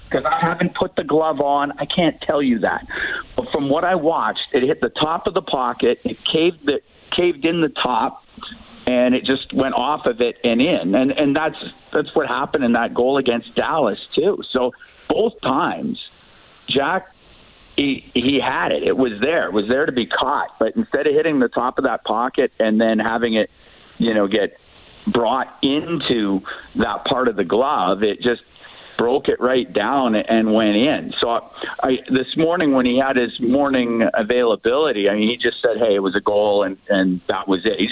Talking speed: 200 wpm